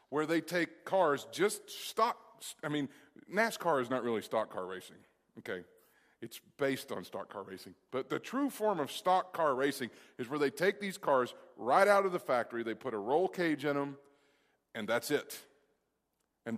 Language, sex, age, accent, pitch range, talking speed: English, male, 40-59, American, 120-165 Hz, 190 wpm